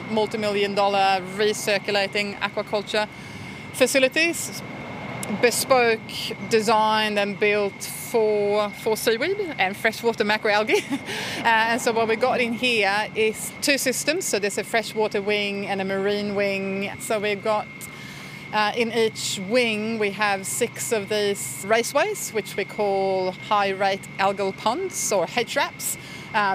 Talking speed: 130 wpm